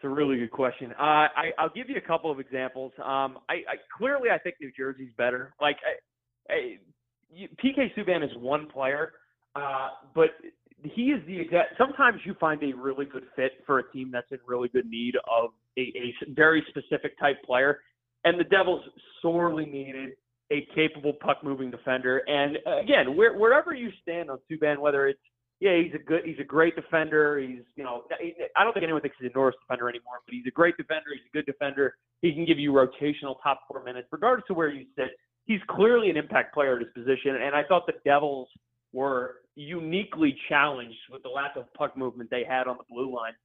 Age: 30-49